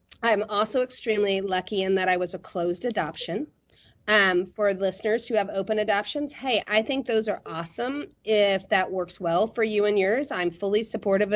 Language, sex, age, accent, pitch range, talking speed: English, female, 30-49, American, 185-225 Hz, 190 wpm